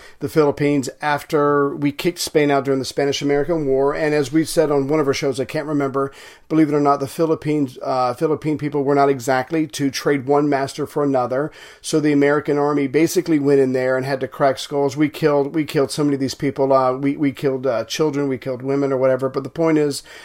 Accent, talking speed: American, 235 wpm